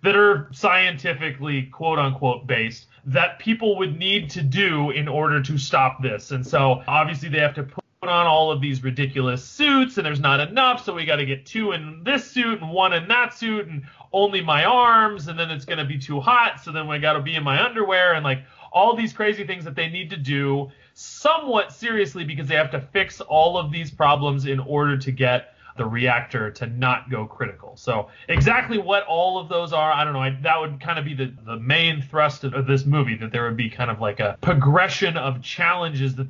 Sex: male